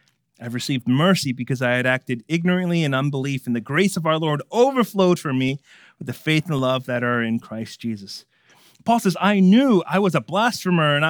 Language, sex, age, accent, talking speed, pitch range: English, male, 30-49, American, 205 wpm, 160-215 Hz